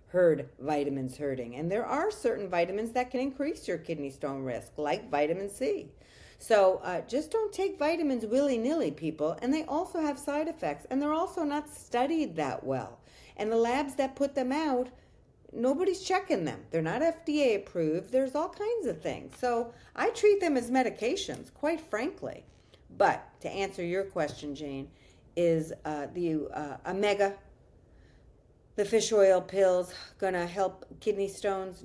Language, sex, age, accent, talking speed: English, female, 50-69, American, 160 wpm